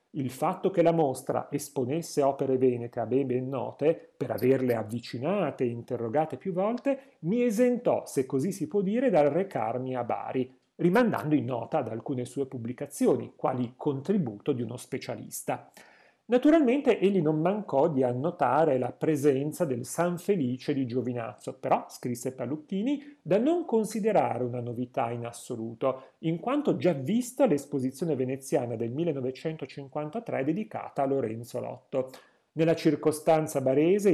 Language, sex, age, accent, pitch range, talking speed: Italian, male, 40-59, native, 125-175 Hz, 140 wpm